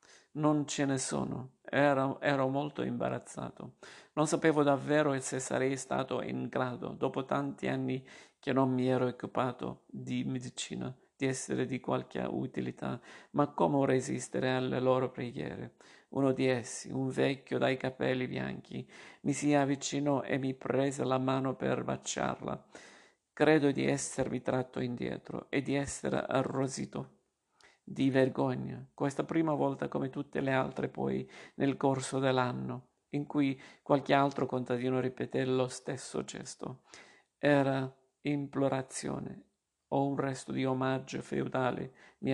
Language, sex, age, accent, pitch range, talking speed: Italian, male, 50-69, native, 125-140 Hz, 135 wpm